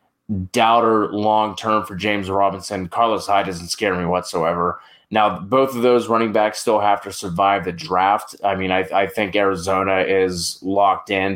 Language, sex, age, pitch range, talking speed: English, male, 20-39, 95-110 Hz, 180 wpm